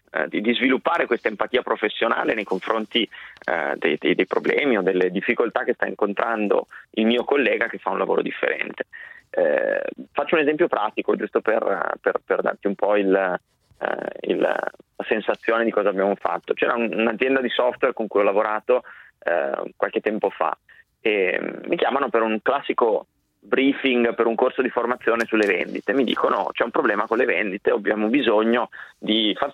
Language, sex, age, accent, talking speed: Italian, male, 30-49, native, 170 wpm